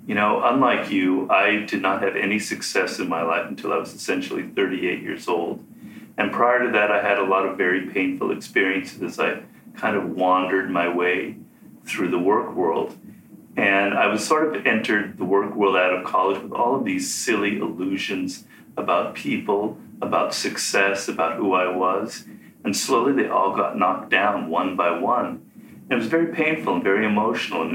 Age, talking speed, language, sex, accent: 40-59, 190 wpm, English, male, American